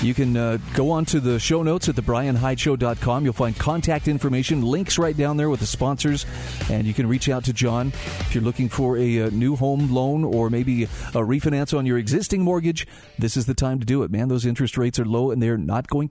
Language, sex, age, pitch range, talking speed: English, male, 40-59, 120-160 Hz, 235 wpm